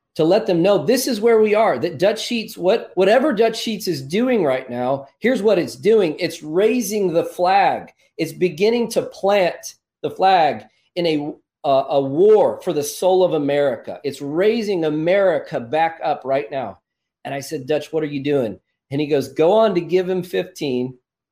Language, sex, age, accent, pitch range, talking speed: English, male, 40-59, American, 135-180 Hz, 190 wpm